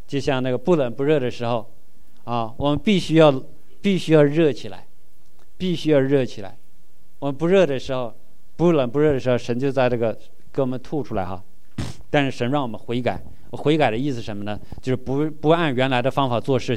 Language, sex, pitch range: Chinese, male, 125-160 Hz